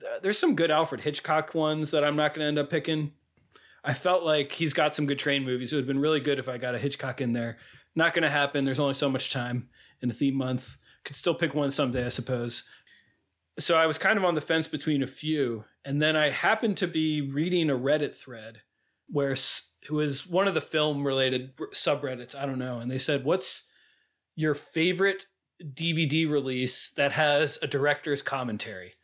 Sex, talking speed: male, 210 wpm